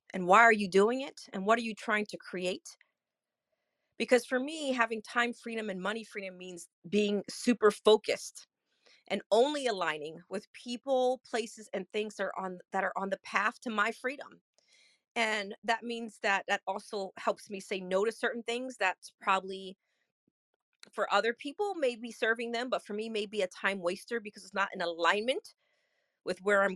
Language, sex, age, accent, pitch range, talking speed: English, female, 30-49, American, 195-250 Hz, 175 wpm